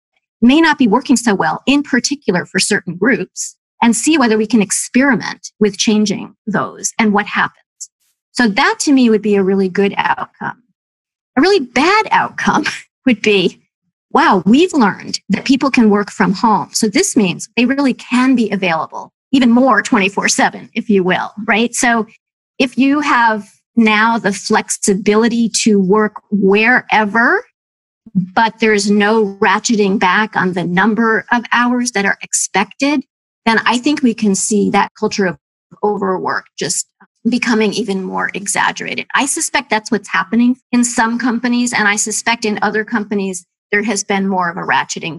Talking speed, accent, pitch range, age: 165 wpm, American, 200-240 Hz, 40-59